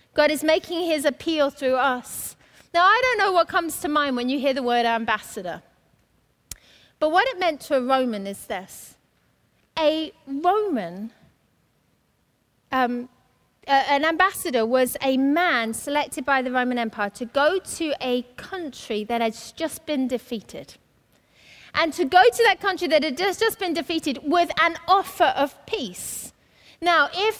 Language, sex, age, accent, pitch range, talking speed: English, female, 30-49, British, 255-335 Hz, 155 wpm